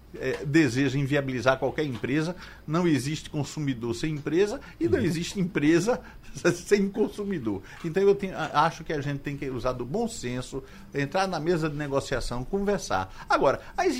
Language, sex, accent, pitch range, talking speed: Portuguese, male, Brazilian, 125-175 Hz, 155 wpm